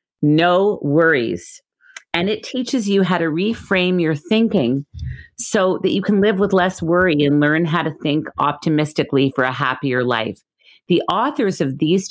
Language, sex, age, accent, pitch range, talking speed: English, female, 40-59, American, 140-190 Hz, 165 wpm